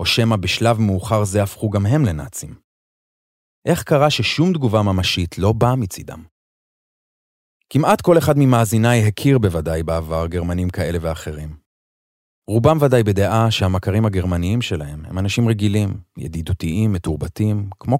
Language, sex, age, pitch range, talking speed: Hebrew, male, 30-49, 85-120 Hz, 130 wpm